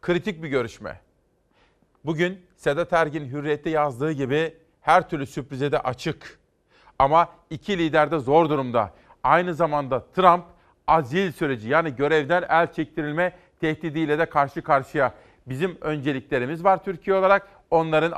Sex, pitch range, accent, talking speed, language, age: male, 145-165 Hz, native, 130 wpm, Turkish, 40-59